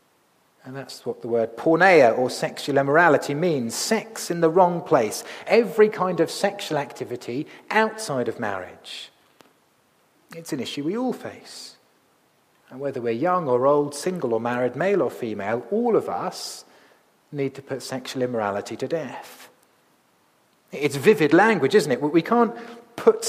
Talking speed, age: 150 wpm, 40-59